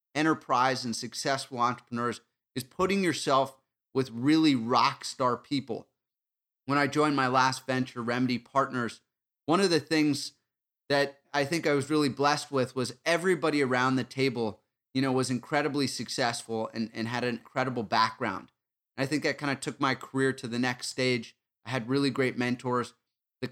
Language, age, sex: English, 30-49, male